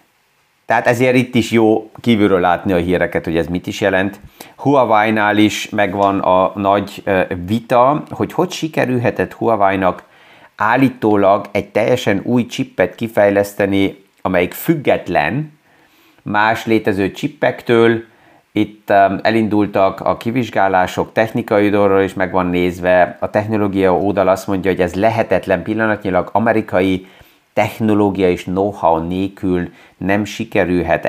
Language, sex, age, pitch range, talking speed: Hungarian, male, 30-49, 95-110 Hz, 120 wpm